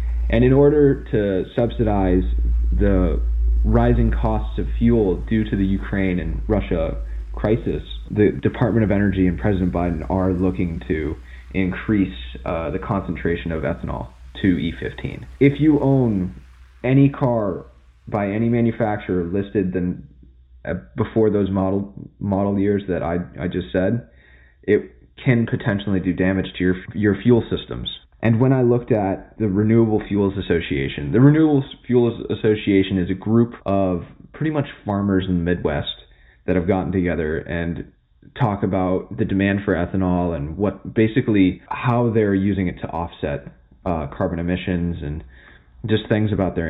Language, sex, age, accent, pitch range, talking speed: English, male, 20-39, American, 85-110 Hz, 150 wpm